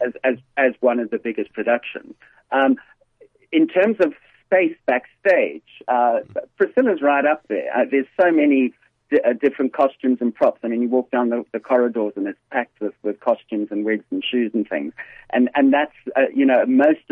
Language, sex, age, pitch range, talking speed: English, male, 40-59, 115-145 Hz, 195 wpm